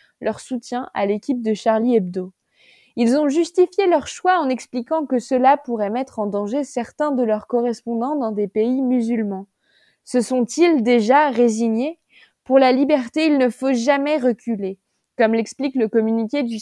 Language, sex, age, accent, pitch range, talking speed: French, female, 20-39, French, 220-275 Hz, 165 wpm